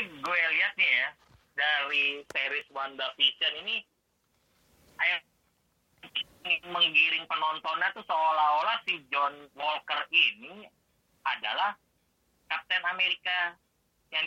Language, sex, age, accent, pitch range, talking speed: Indonesian, male, 30-49, native, 125-175 Hz, 80 wpm